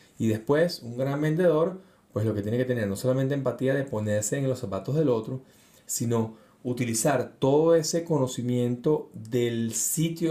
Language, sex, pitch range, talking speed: Spanish, male, 100-130 Hz, 165 wpm